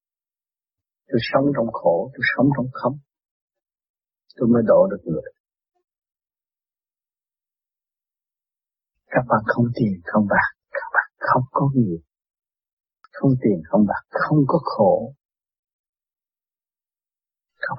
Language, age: Vietnamese, 60-79